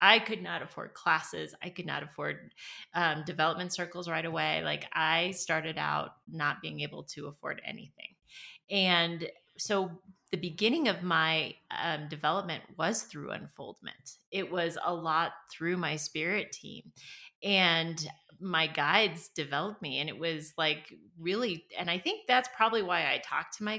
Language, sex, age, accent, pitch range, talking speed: English, female, 30-49, American, 165-220 Hz, 160 wpm